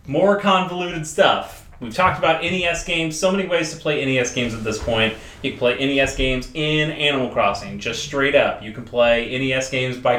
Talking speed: 205 wpm